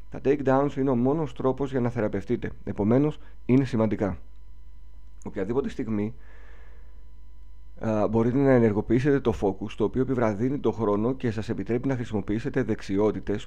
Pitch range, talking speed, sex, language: 105-130 Hz, 135 wpm, male, Greek